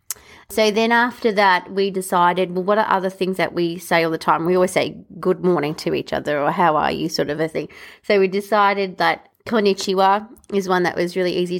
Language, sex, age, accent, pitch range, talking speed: English, female, 30-49, Australian, 170-190 Hz, 230 wpm